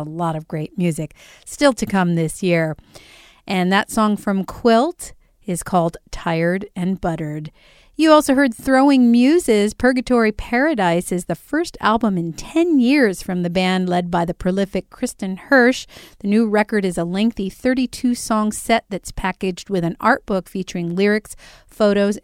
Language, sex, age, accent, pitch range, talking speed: English, female, 40-59, American, 175-230 Hz, 160 wpm